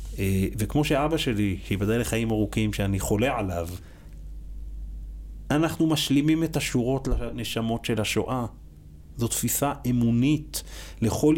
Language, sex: Hebrew, male